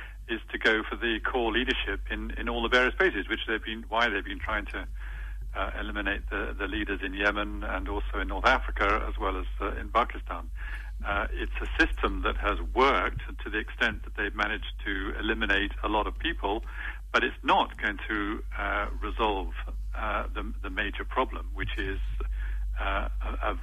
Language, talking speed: English, 190 wpm